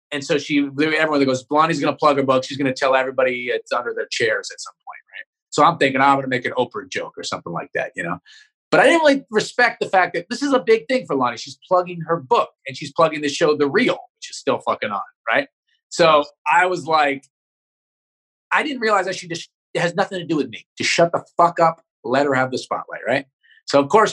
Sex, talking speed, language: male, 250 wpm, English